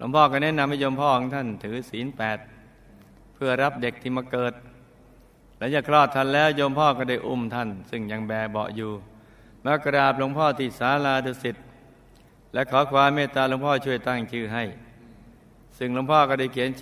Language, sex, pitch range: Thai, male, 115-135 Hz